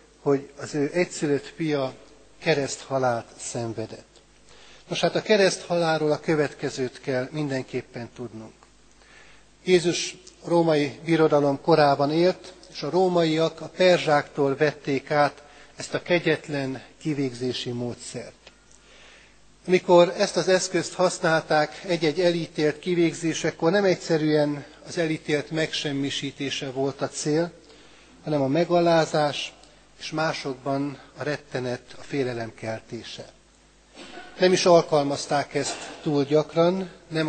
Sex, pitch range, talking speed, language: male, 140-165 Hz, 110 wpm, Hungarian